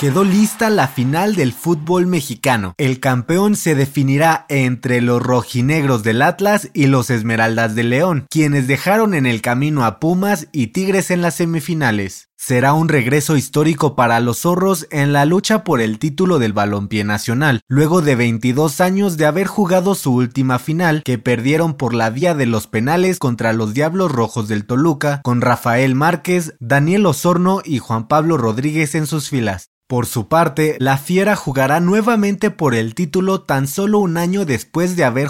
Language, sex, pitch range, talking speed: Spanish, male, 125-170 Hz, 175 wpm